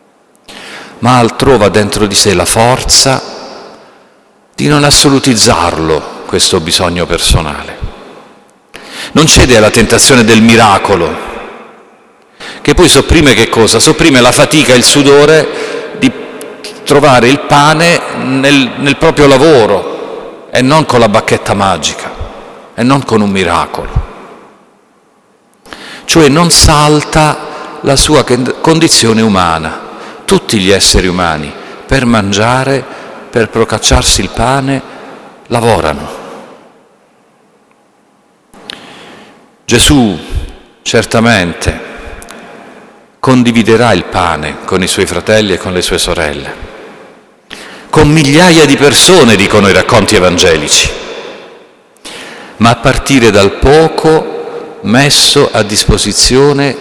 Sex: male